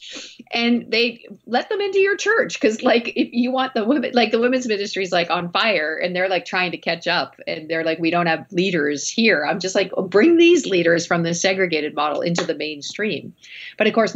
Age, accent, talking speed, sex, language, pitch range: 40-59, American, 230 wpm, female, English, 150-195 Hz